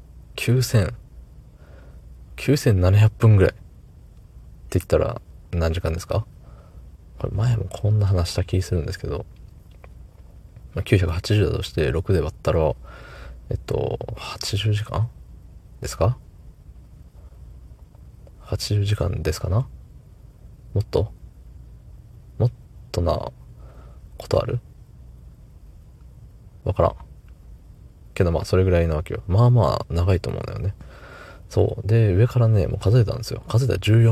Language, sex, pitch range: Japanese, male, 80-110 Hz